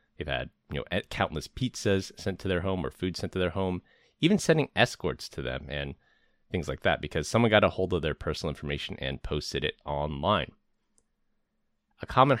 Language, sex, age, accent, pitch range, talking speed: English, male, 30-49, American, 75-95 Hz, 185 wpm